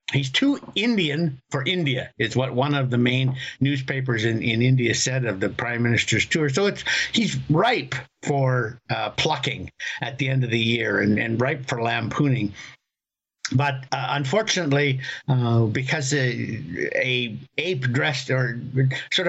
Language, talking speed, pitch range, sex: English, 155 wpm, 130-155 Hz, male